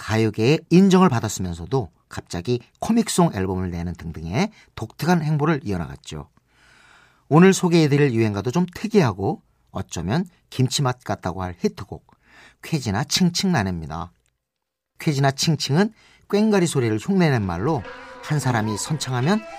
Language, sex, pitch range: Korean, male, 110-175 Hz